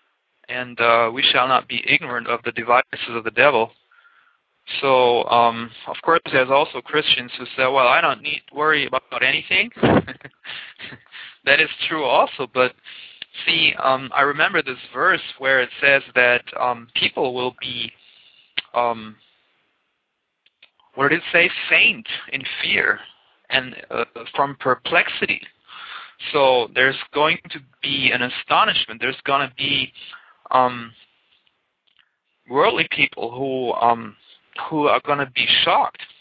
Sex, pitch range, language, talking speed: male, 120-135 Hz, English, 140 wpm